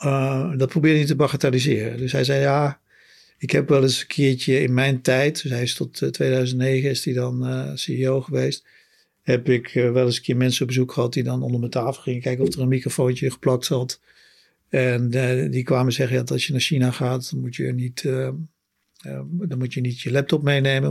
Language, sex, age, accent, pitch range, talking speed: Dutch, male, 50-69, Dutch, 125-145 Hz, 220 wpm